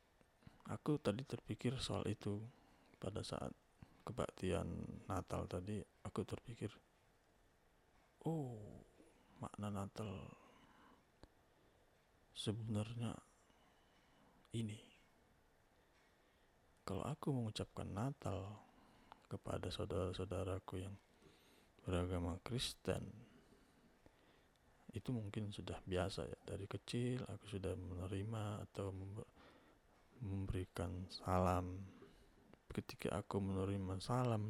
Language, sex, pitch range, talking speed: Indonesian, male, 95-110 Hz, 75 wpm